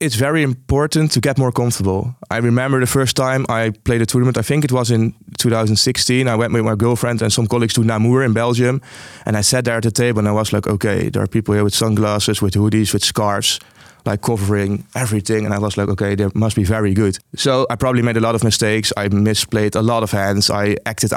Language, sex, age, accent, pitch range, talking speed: English, male, 20-39, Dutch, 110-125 Hz, 240 wpm